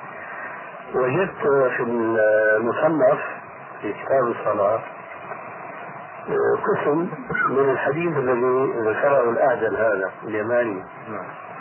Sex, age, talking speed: male, 50-69, 70 wpm